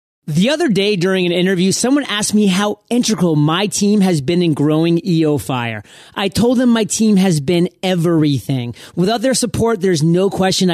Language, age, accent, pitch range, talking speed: English, 30-49, American, 155-205 Hz, 185 wpm